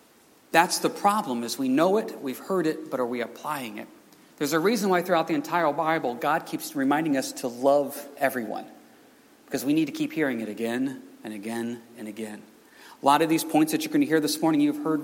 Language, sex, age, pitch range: English, male, 40-59, 125-175 Hz